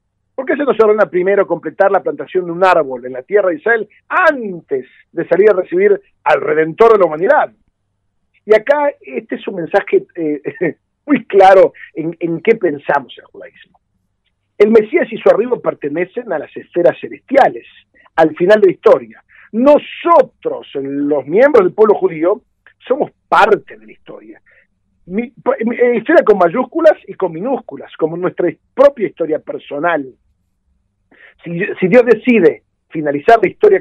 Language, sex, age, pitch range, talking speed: Spanish, male, 50-69, 160-260 Hz, 160 wpm